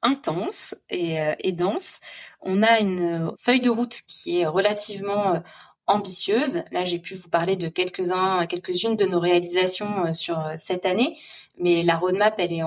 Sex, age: female, 20-39